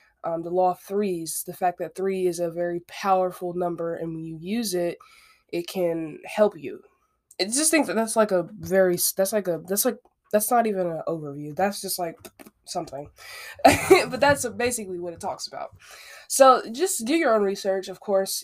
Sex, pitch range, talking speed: female, 175-215 Hz, 195 wpm